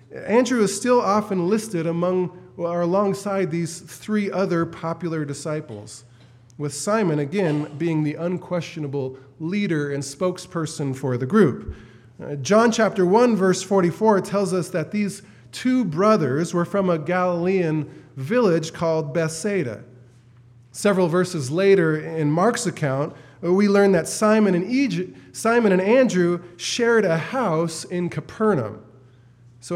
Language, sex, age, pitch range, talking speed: English, male, 20-39, 145-195 Hz, 130 wpm